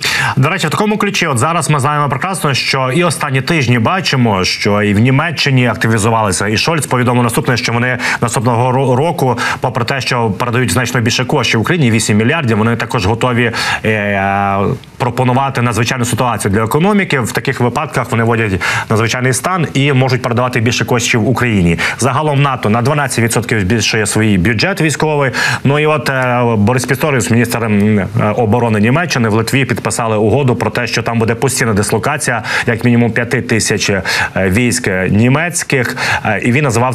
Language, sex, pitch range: Ukrainian, male, 115-140 Hz